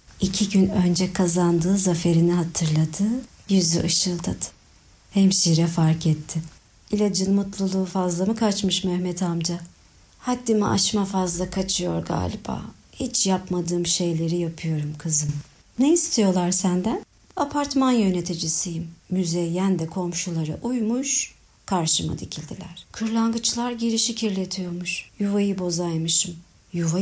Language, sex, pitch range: Turkish, male, 170-200 Hz